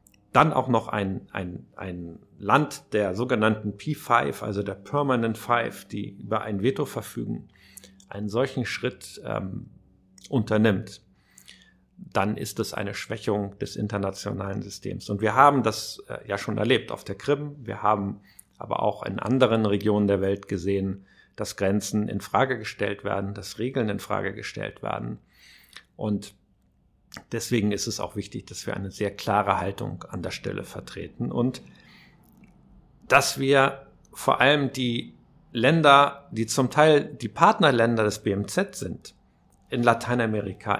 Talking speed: 145 wpm